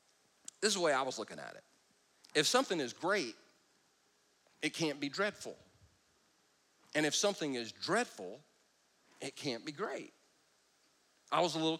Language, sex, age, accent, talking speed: English, male, 40-59, American, 155 wpm